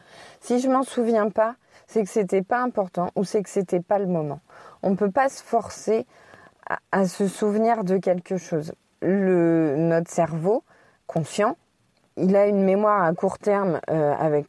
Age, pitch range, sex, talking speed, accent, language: 20-39, 175-215 Hz, female, 185 wpm, French, French